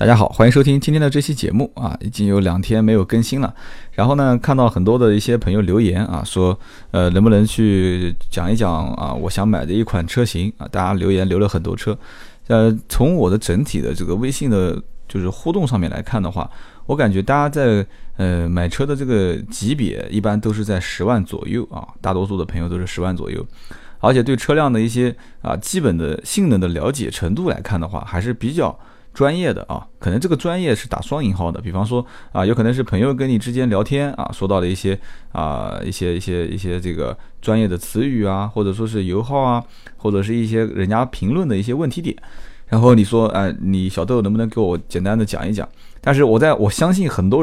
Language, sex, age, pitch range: Chinese, male, 20-39, 95-125 Hz